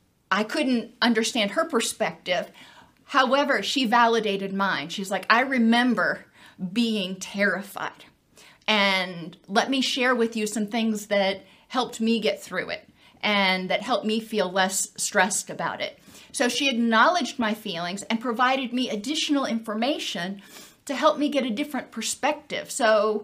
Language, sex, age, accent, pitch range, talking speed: English, female, 30-49, American, 210-255 Hz, 145 wpm